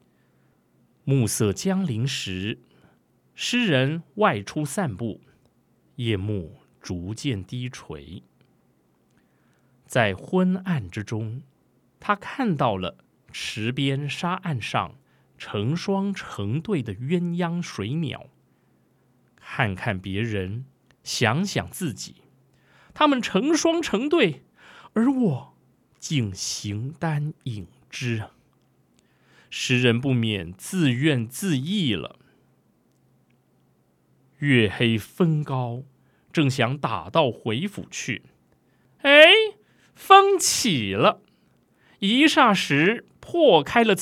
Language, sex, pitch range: Chinese, male, 110-185 Hz